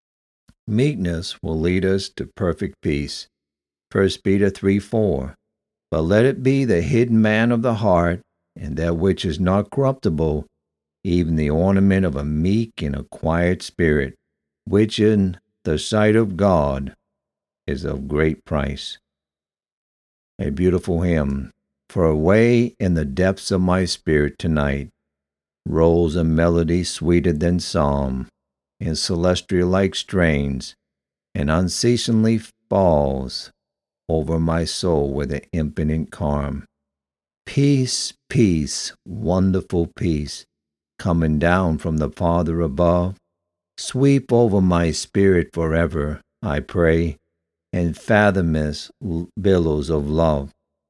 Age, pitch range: 60-79, 75-95 Hz